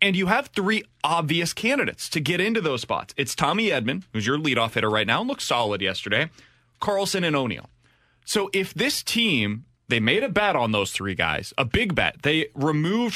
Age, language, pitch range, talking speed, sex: 20-39, English, 120-170 Hz, 200 wpm, male